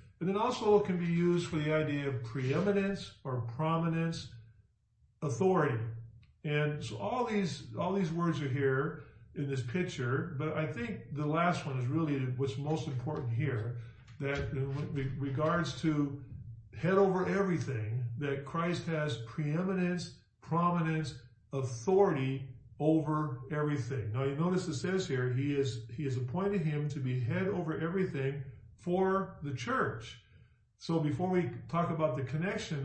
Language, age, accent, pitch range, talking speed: English, 50-69, American, 125-165 Hz, 150 wpm